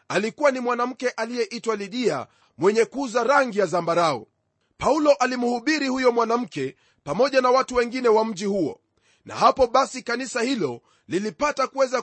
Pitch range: 220-265 Hz